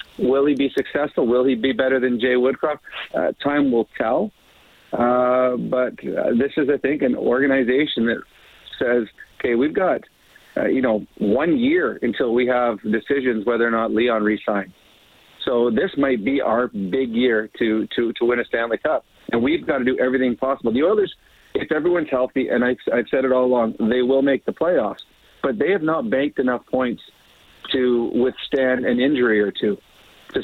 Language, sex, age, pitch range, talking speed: English, male, 50-69, 120-140 Hz, 185 wpm